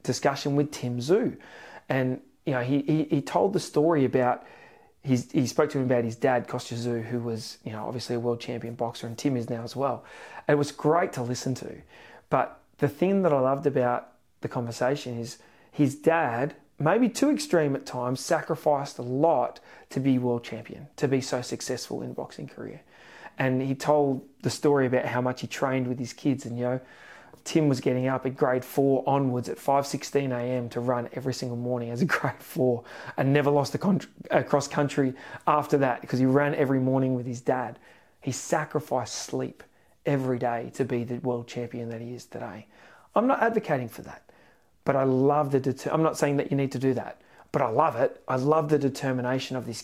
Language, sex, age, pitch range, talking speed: English, male, 30-49, 125-145 Hz, 205 wpm